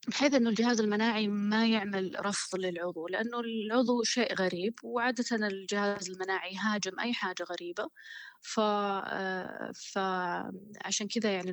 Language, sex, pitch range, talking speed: Arabic, female, 180-225 Hz, 120 wpm